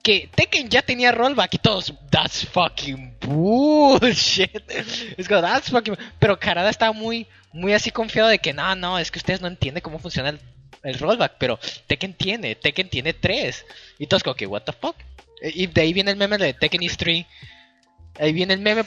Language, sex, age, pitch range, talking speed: Spanish, male, 20-39, 130-195 Hz, 200 wpm